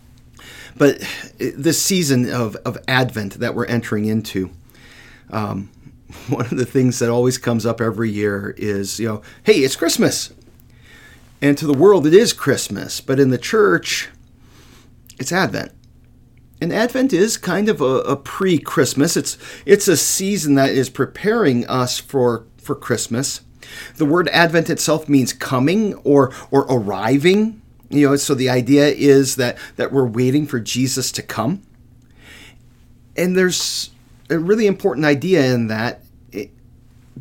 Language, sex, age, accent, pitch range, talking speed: English, male, 40-59, American, 120-155 Hz, 145 wpm